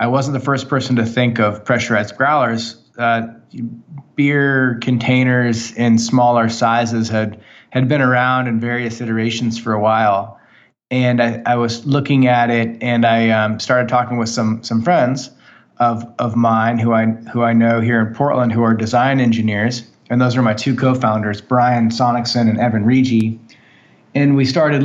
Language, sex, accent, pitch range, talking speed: English, male, American, 115-130 Hz, 170 wpm